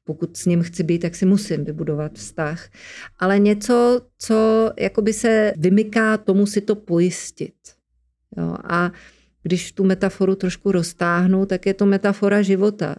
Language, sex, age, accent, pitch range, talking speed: Czech, female, 40-59, native, 175-200 Hz, 150 wpm